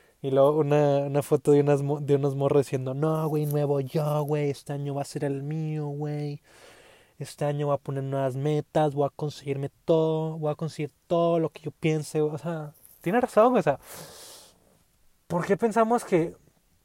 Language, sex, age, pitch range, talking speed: Spanish, male, 20-39, 140-165 Hz, 190 wpm